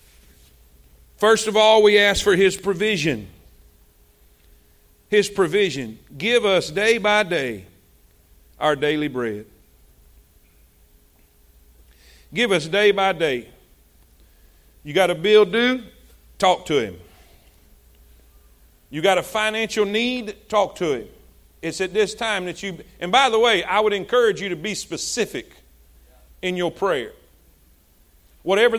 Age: 50-69